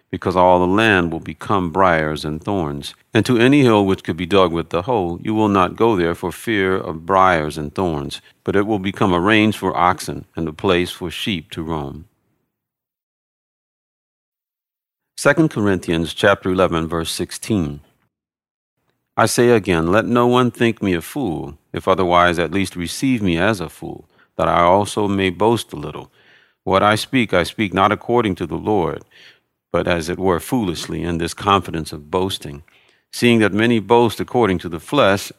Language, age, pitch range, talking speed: English, 40-59, 85-110 Hz, 180 wpm